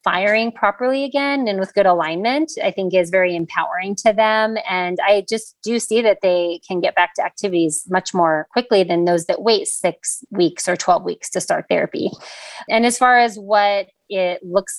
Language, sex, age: English, female, 30-49